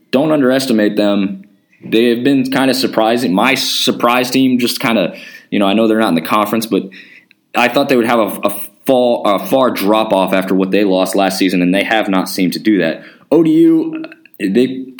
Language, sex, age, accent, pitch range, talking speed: English, male, 20-39, American, 100-125 Hz, 210 wpm